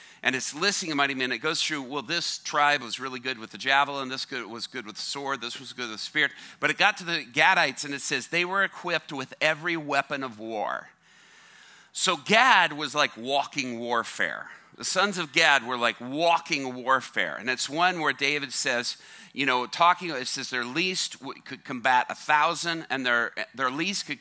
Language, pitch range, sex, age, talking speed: English, 135-180 Hz, male, 50-69, 215 wpm